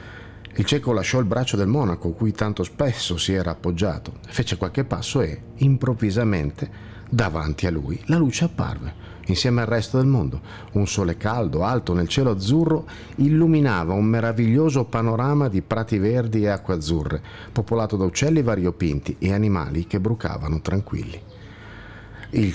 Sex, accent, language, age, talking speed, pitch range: male, native, Italian, 50-69, 150 wpm, 90-120 Hz